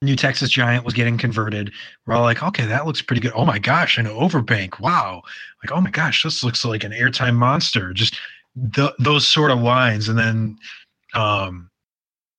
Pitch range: 110-135 Hz